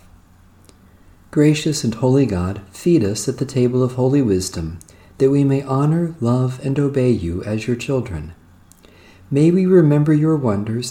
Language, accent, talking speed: English, American, 155 wpm